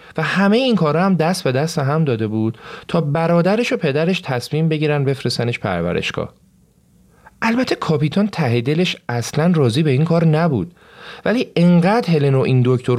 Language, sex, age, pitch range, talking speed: Persian, male, 40-59, 125-180 Hz, 155 wpm